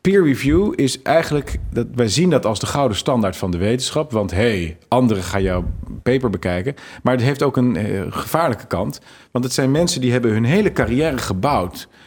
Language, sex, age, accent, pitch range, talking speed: Dutch, male, 40-59, Dutch, 100-135 Hz, 195 wpm